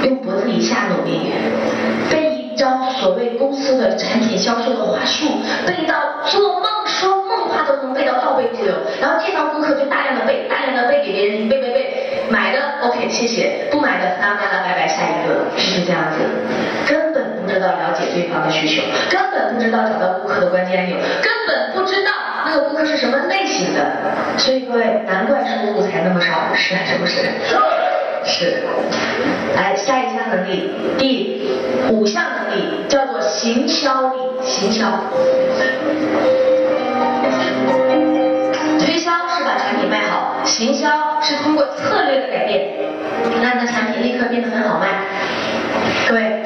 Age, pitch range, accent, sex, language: 20-39, 215-300 Hz, native, female, Chinese